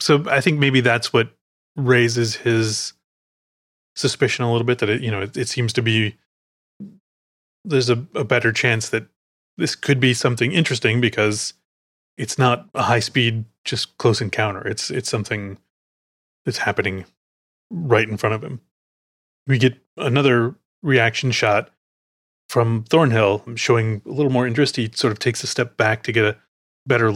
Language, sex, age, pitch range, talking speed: English, male, 30-49, 105-125 Hz, 165 wpm